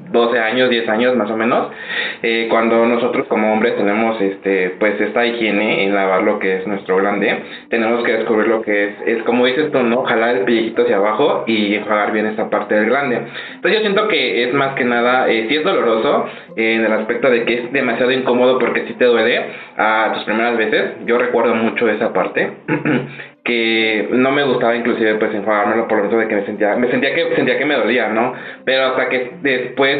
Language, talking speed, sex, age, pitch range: Spanish, 215 wpm, male, 20-39, 110-125 Hz